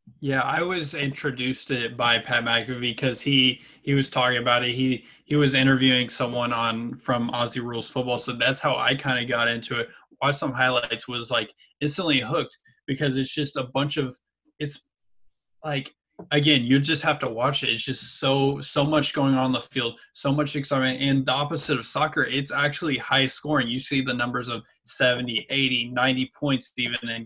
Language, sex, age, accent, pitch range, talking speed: English, male, 20-39, American, 125-145 Hz, 200 wpm